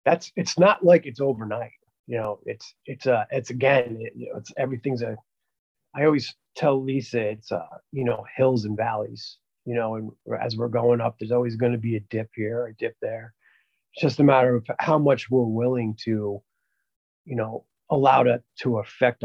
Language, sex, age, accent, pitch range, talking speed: English, male, 30-49, American, 110-130 Hz, 200 wpm